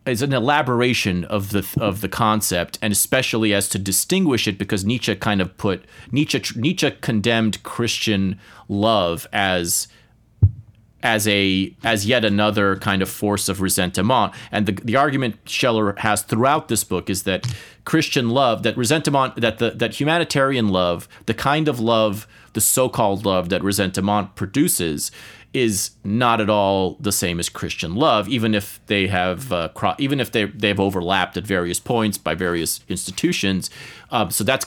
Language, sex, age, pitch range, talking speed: English, male, 30-49, 95-115 Hz, 165 wpm